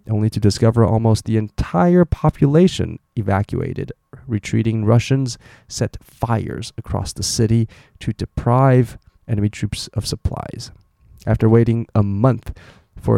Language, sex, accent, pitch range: Chinese, male, American, 105-125 Hz